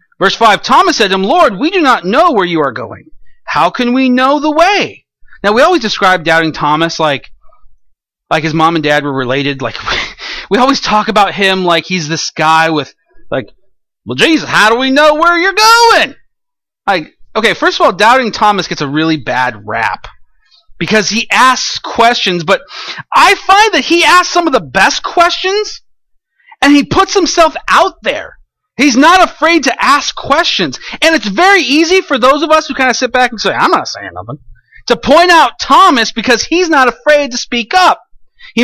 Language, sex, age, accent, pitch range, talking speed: English, male, 30-49, American, 185-310 Hz, 195 wpm